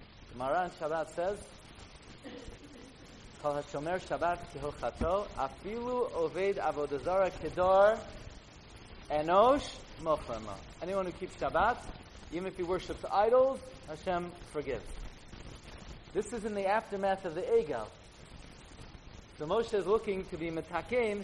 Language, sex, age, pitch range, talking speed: English, male, 40-59, 155-210 Hz, 105 wpm